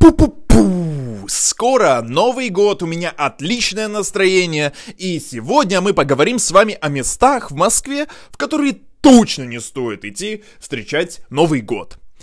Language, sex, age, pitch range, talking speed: Russian, male, 20-39, 155-210 Hz, 135 wpm